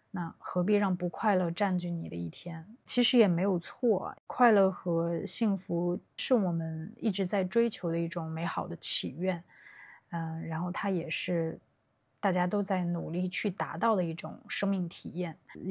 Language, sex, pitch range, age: Chinese, female, 170-200 Hz, 20-39